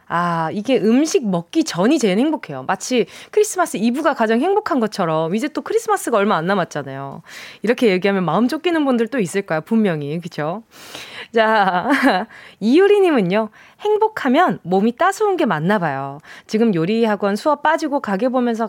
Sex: female